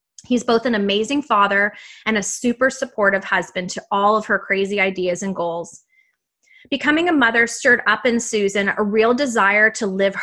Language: English